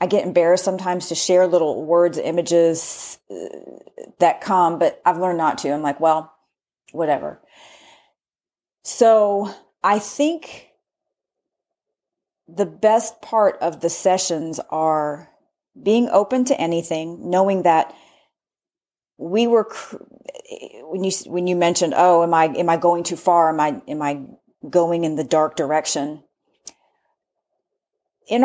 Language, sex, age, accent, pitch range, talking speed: English, female, 40-59, American, 165-210 Hz, 130 wpm